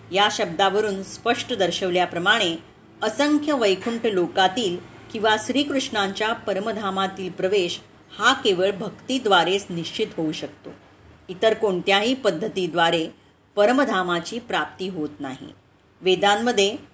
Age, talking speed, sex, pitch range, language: 30-49, 90 wpm, female, 180-225 Hz, Marathi